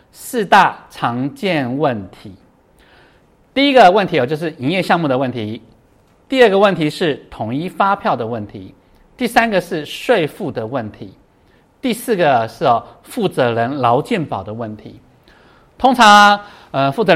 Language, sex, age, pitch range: Chinese, male, 50-69, 130-200 Hz